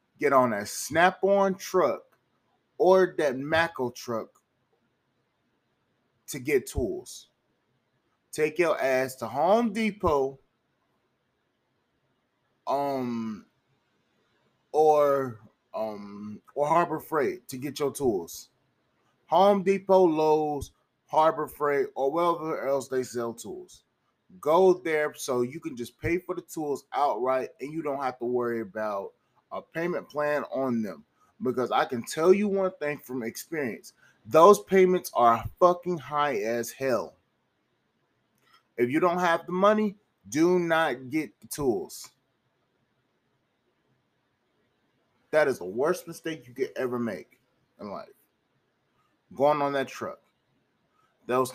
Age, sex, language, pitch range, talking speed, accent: 20-39, male, English, 130-180 Hz, 120 wpm, American